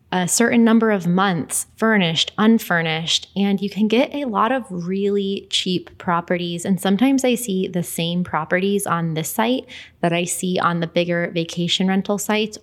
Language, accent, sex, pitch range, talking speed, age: English, American, female, 170-195 Hz, 170 wpm, 20-39